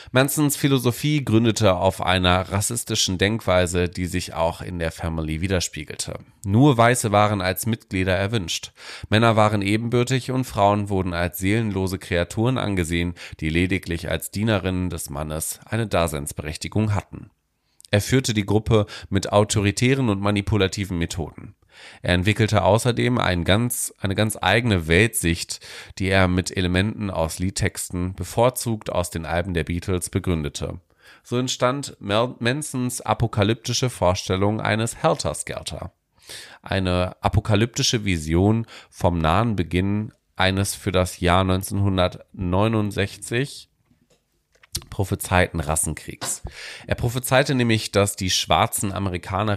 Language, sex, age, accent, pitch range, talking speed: German, male, 30-49, German, 90-115 Hz, 120 wpm